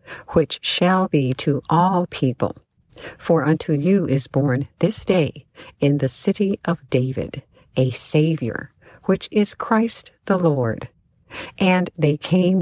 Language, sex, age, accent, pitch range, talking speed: English, female, 50-69, American, 135-175 Hz, 135 wpm